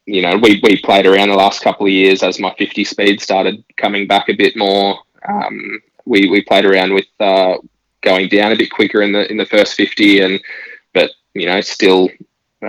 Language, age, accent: English, 10-29, Australian